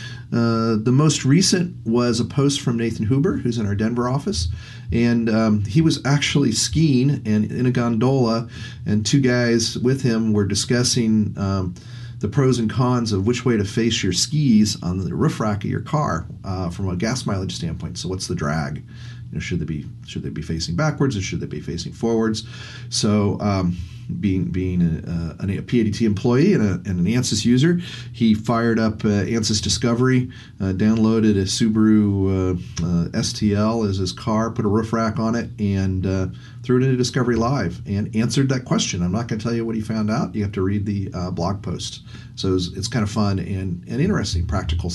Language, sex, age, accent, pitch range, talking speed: English, male, 40-59, American, 100-125 Hz, 200 wpm